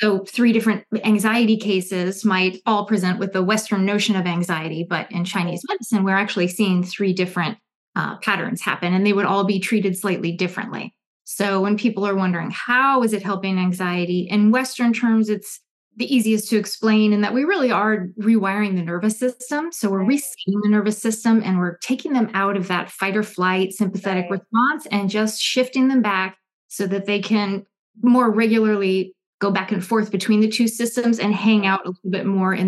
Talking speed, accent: 195 wpm, American